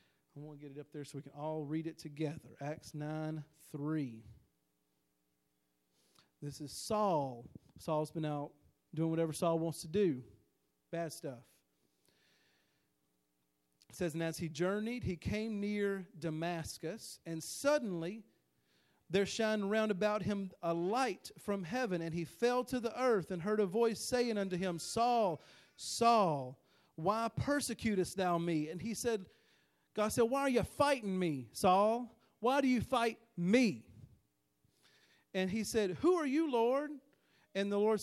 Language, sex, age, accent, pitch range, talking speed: English, male, 40-59, American, 150-220 Hz, 155 wpm